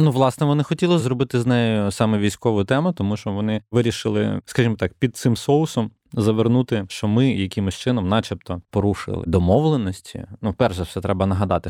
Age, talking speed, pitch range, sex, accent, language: 20-39, 170 wpm, 90-110 Hz, male, native, Ukrainian